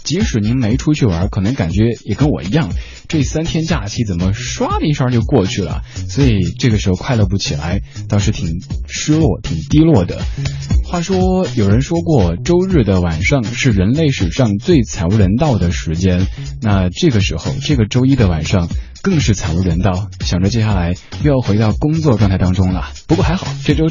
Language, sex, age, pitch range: Chinese, male, 20-39, 95-135 Hz